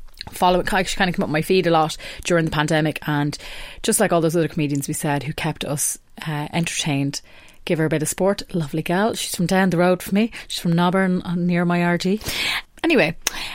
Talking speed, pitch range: 215 wpm, 155-200 Hz